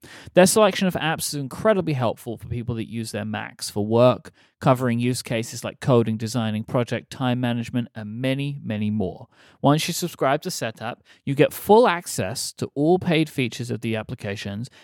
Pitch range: 115-150 Hz